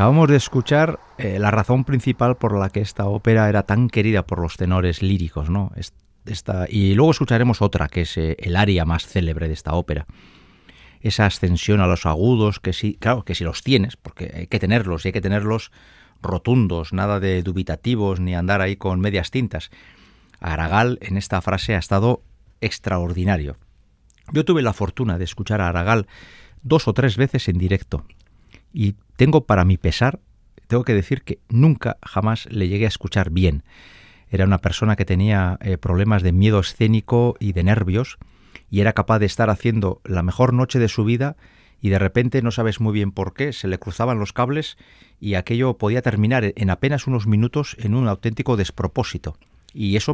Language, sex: Spanish, male